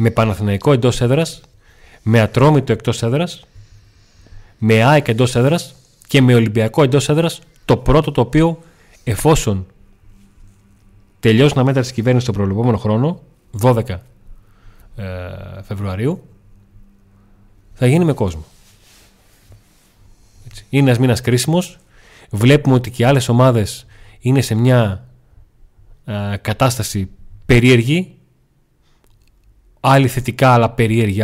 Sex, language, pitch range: male, Greek, 100-130 Hz